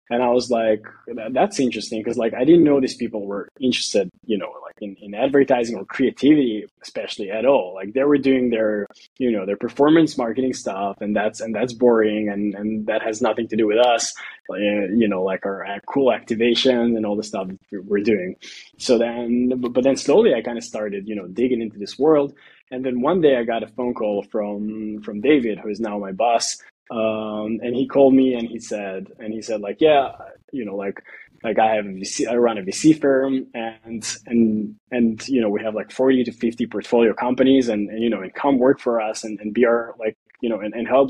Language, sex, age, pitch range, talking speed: English, male, 20-39, 105-130 Hz, 225 wpm